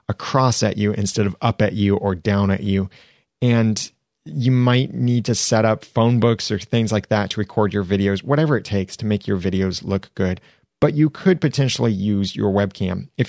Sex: male